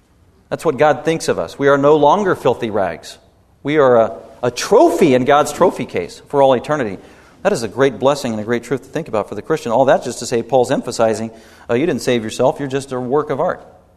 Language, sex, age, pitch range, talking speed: English, male, 40-59, 125-160 Hz, 245 wpm